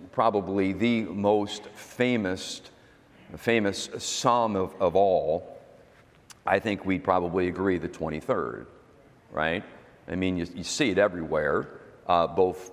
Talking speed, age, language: 125 wpm, 50-69, English